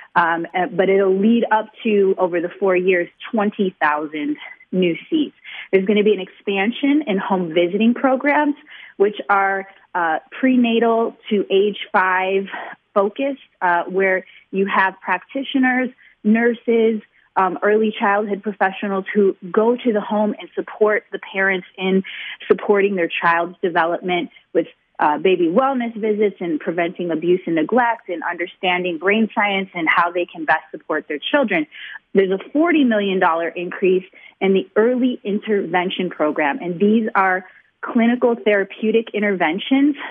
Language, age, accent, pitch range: English, 30-49, American, 185-230 Hz